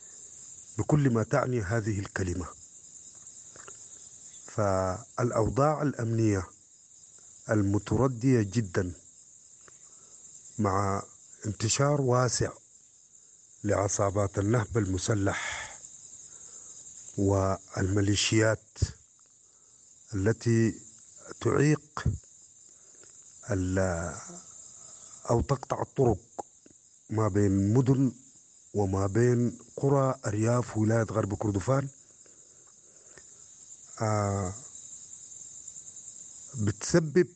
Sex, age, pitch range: male, 50-69, 100-125 Hz